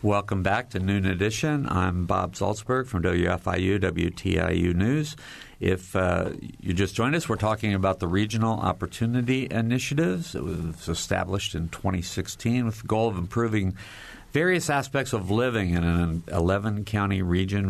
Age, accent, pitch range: 50-69, American, 90-110 Hz